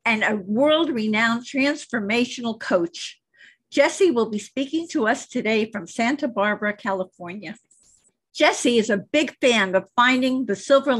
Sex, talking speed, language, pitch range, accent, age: female, 140 wpm, English, 200-280 Hz, American, 50-69